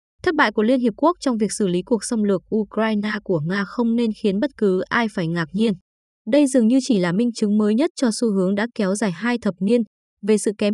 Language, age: Vietnamese, 20-39